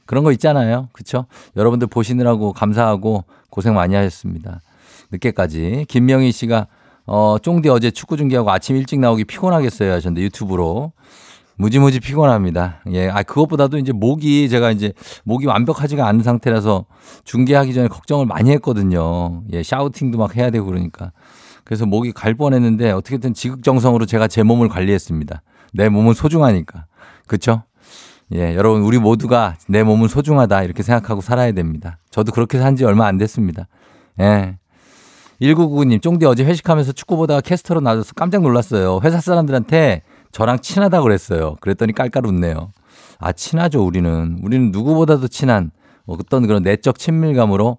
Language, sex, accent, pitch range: Korean, male, native, 100-135 Hz